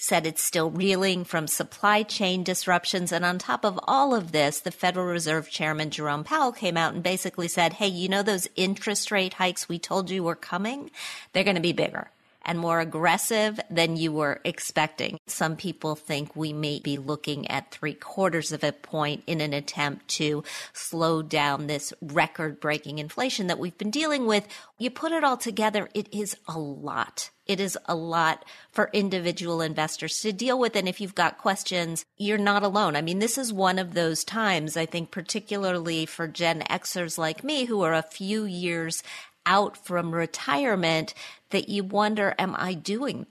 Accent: American